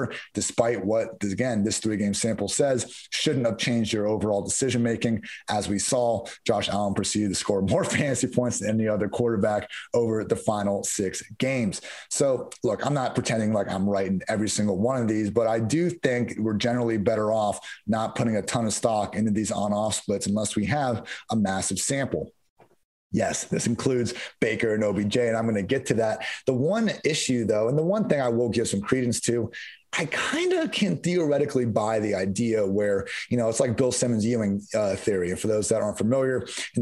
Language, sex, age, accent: English, male, 30-49, American